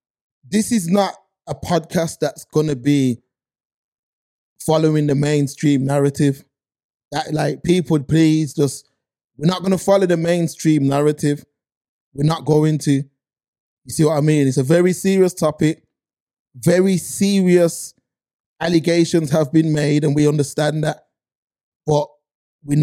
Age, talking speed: 20-39, 135 wpm